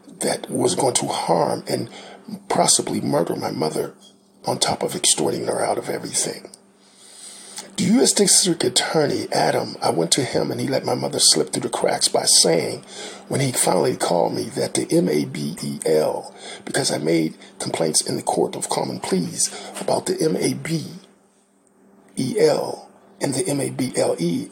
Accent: American